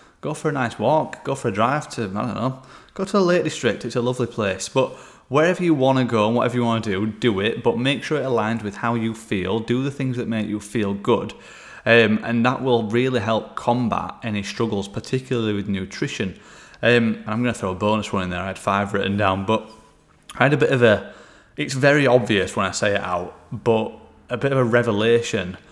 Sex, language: male, English